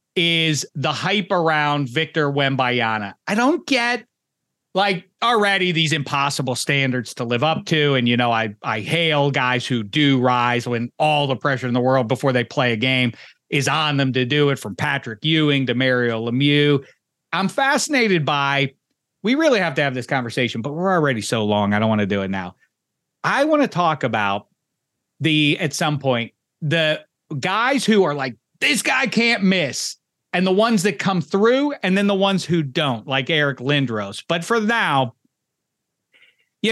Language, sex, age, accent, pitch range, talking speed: English, male, 40-59, American, 130-205 Hz, 180 wpm